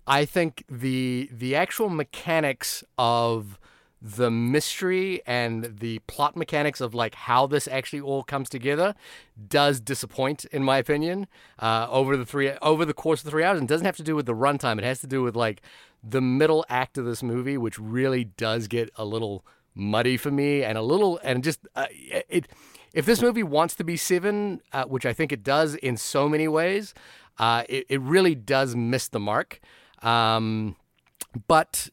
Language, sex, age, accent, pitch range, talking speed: English, male, 30-49, American, 120-160 Hz, 190 wpm